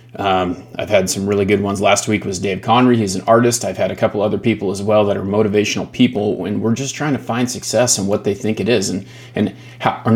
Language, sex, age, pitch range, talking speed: English, male, 30-49, 100-120 Hz, 260 wpm